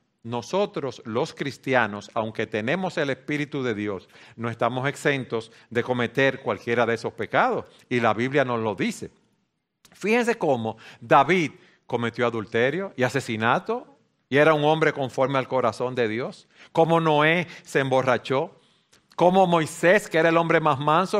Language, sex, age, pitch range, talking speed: Spanish, male, 50-69, 120-165 Hz, 145 wpm